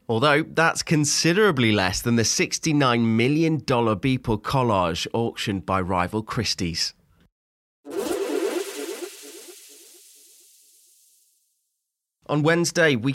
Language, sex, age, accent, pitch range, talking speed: English, male, 30-49, British, 110-155 Hz, 80 wpm